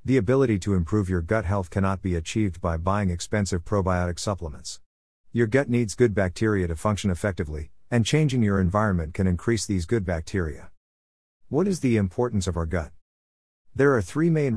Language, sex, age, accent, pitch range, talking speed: English, male, 50-69, American, 85-115 Hz, 175 wpm